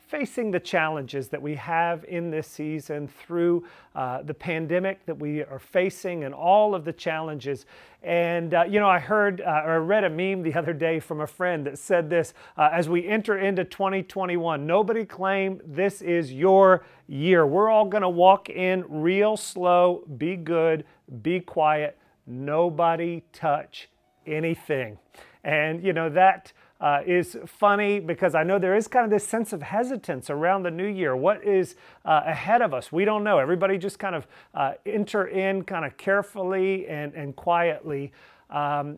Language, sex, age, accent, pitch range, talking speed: English, male, 40-59, American, 150-195 Hz, 175 wpm